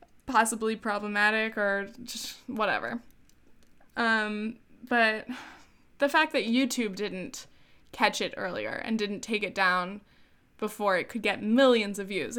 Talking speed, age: 130 wpm, 10-29